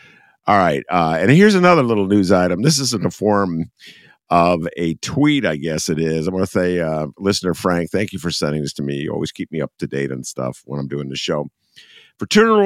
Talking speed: 235 wpm